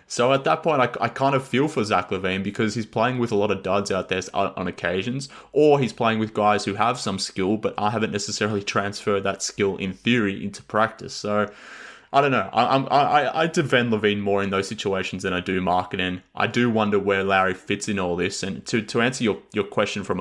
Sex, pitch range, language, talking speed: male, 95-110 Hz, English, 235 wpm